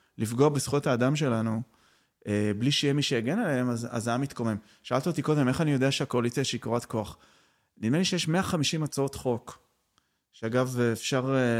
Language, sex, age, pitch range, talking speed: Hebrew, male, 30-49, 110-135 Hz, 160 wpm